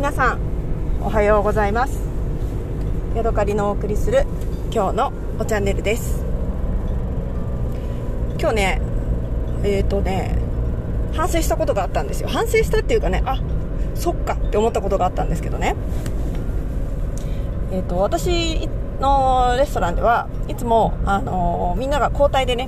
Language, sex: Japanese, female